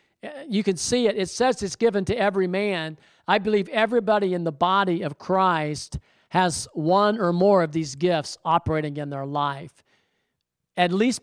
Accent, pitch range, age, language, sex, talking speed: American, 155-195 Hz, 50-69, English, male, 170 wpm